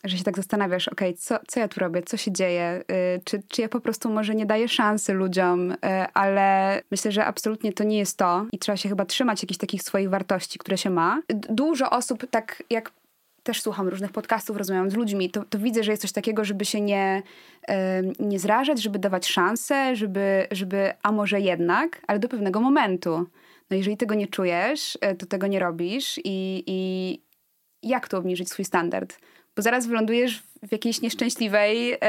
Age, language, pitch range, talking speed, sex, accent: 20-39, Polish, 195-230 Hz, 195 wpm, female, native